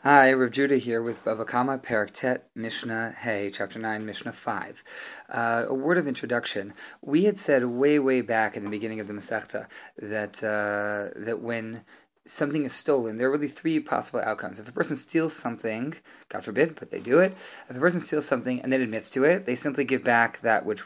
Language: English